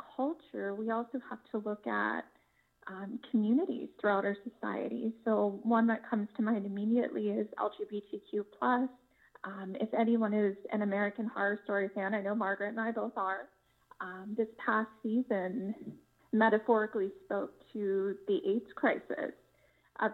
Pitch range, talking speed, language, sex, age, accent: 205-245 Hz, 145 wpm, English, female, 20-39, American